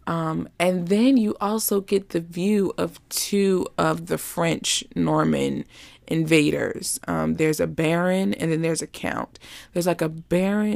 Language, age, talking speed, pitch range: English, 20-39, 155 wpm, 140-200 Hz